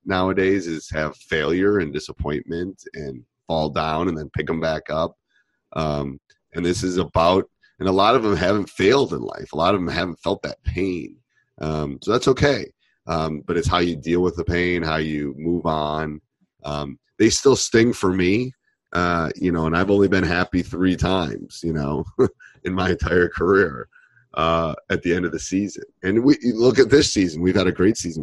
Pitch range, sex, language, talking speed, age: 80-90 Hz, male, English, 200 wpm, 30-49